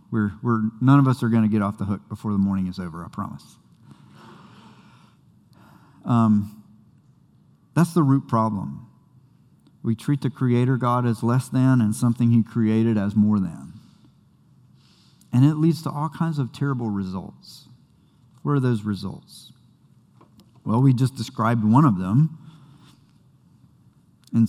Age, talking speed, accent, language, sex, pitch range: 50-69, 145 wpm, American, English, male, 105-130 Hz